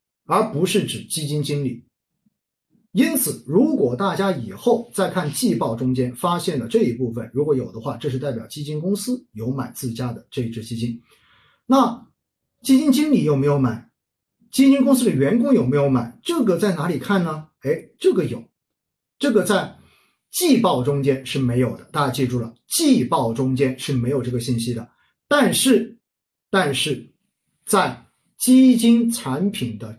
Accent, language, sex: native, Chinese, male